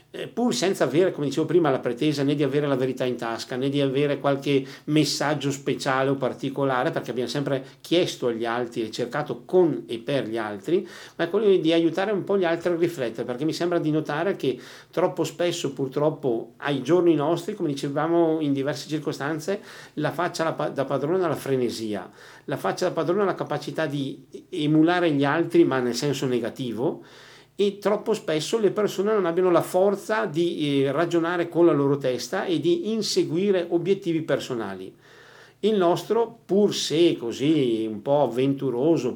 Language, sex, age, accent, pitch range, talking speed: Italian, male, 50-69, native, 135-170 Hz, 175 wpm